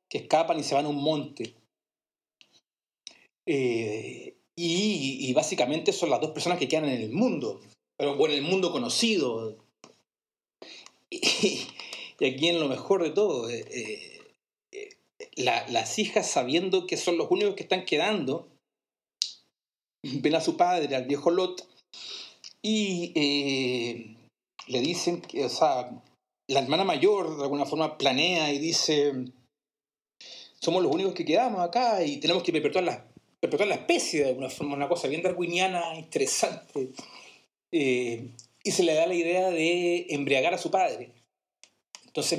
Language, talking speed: Spanish, 150 wpm